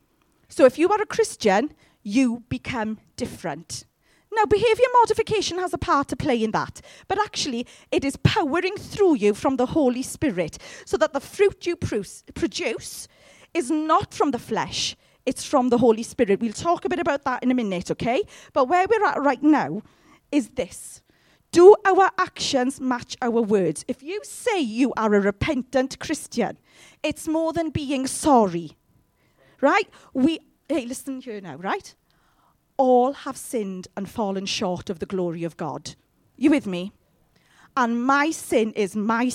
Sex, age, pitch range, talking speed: female, 40-59, 225-315 Hz, 165 wpm